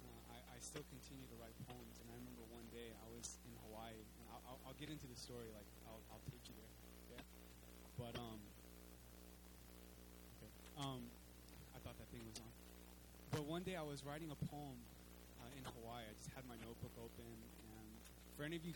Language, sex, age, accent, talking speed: English, male, 20-39, American, 195 wpm